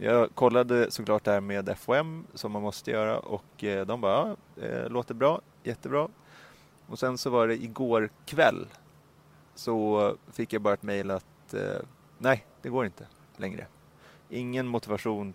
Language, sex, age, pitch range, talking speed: Swedish, male, 30-49, 100-120 Hz, 155 wpm